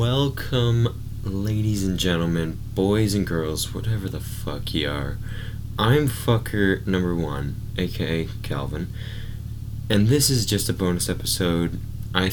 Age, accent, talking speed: 20-39, American, 125 wpm